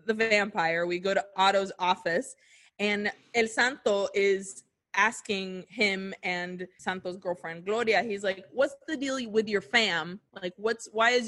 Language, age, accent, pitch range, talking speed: English, 20-39, American, 190-230 Hz, 155 wpm